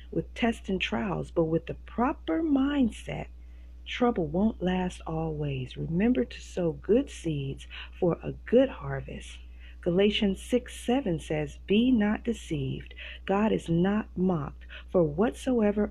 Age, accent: 40-59, American